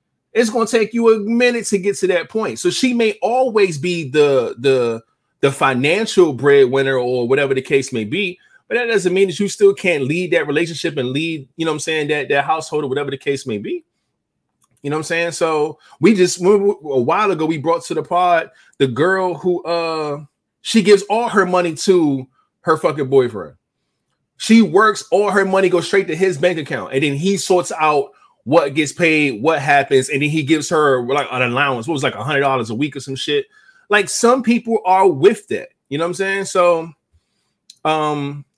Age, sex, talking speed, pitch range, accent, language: 20-39, male, 215 wpm, 145-195 Hz, American, English